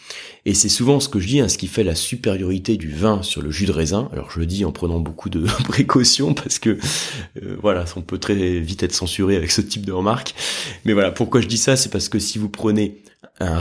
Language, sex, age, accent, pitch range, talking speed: French, male, 20-39, French, 95-130 Hz, 250 wpm